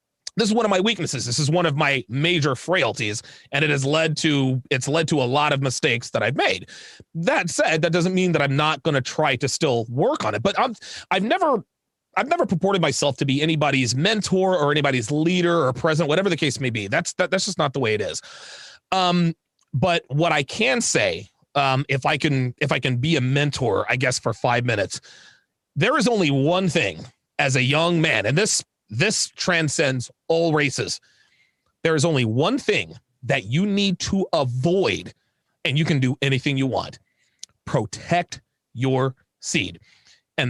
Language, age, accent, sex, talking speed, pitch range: English, 30-49, American, male, 195 wpm, 135-175 Hz